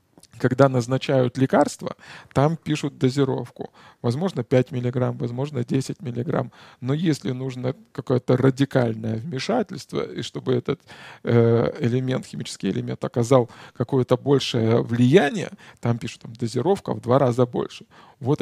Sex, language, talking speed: male, Russian, 115 wpm